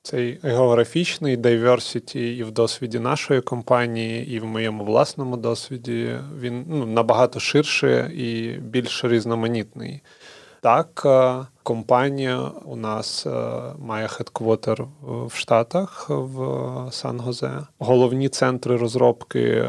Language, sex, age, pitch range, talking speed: Ukrainian, male, 30-49, 110-130 Hz, 100 wpm